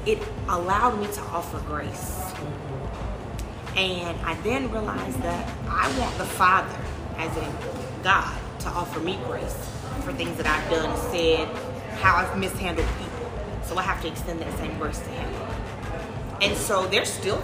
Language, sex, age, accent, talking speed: English, female, 30-49, American, 160 wpm